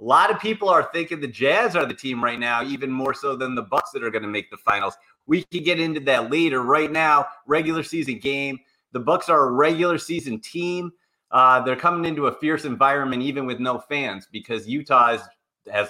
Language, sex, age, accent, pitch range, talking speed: English, male, 30-49, American, 105-140 Hz, 225 wpm